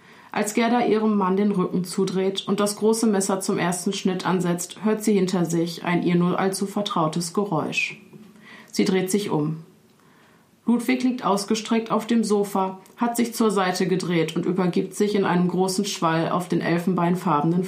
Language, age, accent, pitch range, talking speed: German, 30-49, German, 175-205 Hz, 170 wpm